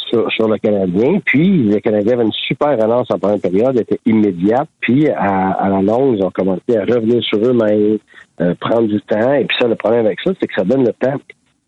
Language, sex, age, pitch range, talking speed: French, male, 60-79, 95-120 Hz, 235 wpm